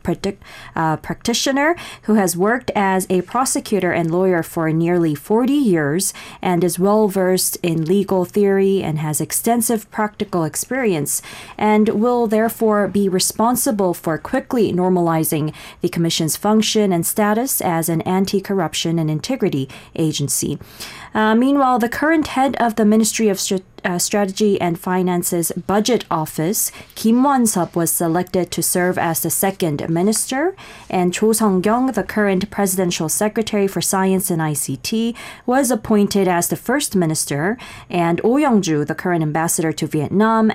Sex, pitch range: female, 165-220 Hz